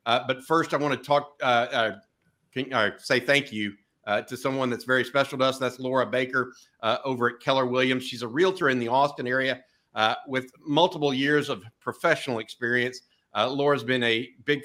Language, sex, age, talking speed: English, male, 50-69, 195 wpm